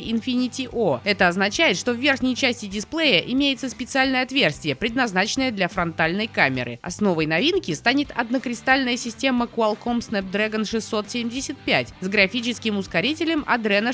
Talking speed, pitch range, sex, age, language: 115 wpm, 205-285 Hz, female, 20-39, Russian